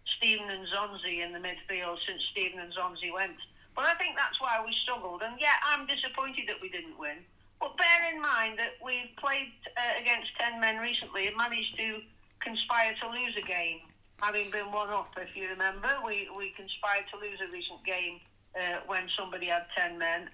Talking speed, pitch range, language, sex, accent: 200 wpm, 200-250 Hz, English, female, British